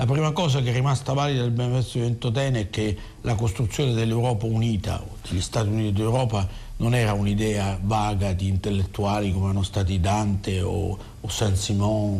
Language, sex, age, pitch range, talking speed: Italian, male, 50-69, 100-125 Hz, 160 wpm